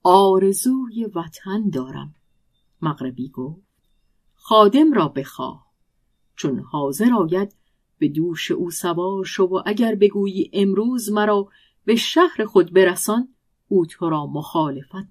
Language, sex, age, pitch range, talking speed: Persian, female, 50-69, 155-215 Hz, 115 wpm